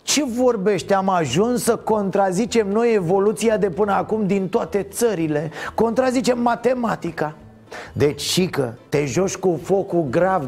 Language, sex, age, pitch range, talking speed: Romanian, male, 30-49, 155-215 Hz, 135 wpm